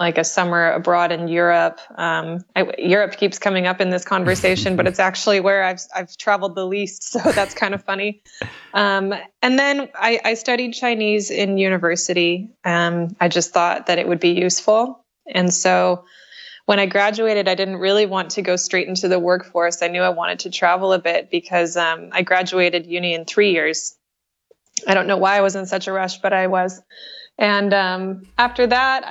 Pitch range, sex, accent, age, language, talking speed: 175-205 Hz, female, American, 20-39, English, 195 wpm